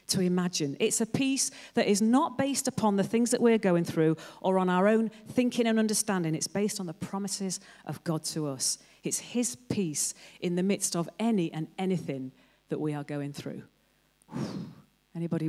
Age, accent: 40-59, British